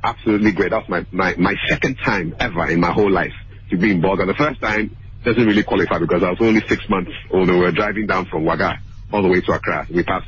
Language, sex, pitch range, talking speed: English, male, 100-115 Hz, 250 wpm